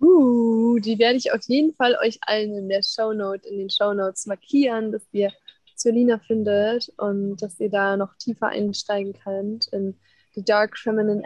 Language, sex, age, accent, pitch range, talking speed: German, female, 20-39, German, 200-225 Hz, 170 wpm